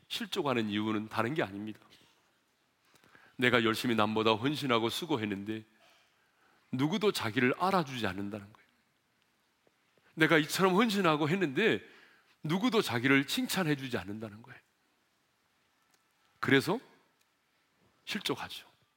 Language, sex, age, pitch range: Korean, male, 40-59, 110-180 Hz